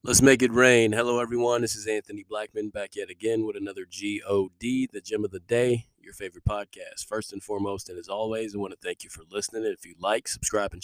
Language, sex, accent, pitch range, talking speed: English, male, American, 100-115 Hz, 235 wpm